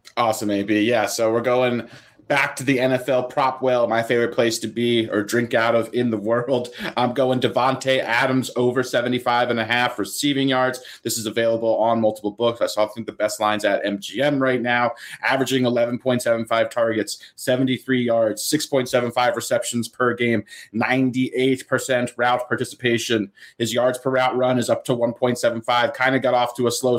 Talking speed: 180 wpm